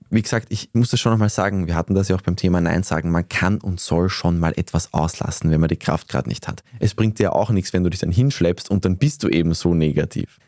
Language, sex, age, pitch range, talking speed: German, male, 20-39, 85-105 Hz, 280 wpm